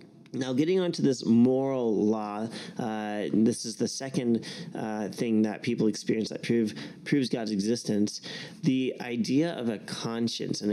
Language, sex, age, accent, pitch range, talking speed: English, male, 30-49, American, 110-140 Hz, 150 wpm